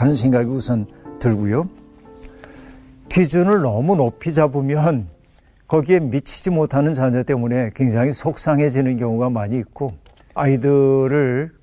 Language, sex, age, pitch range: Korean, male, 60-79, 120-155 Hz